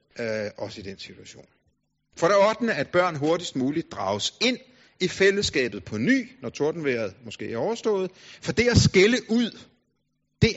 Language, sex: Danish, male